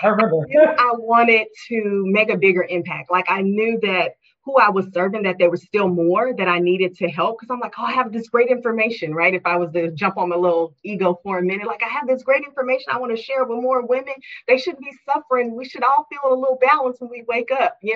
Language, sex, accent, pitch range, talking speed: English, female, American, 180-240 Hz, 255 wpm